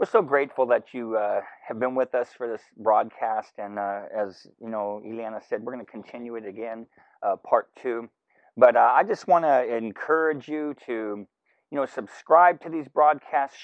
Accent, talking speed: American, 195 wpm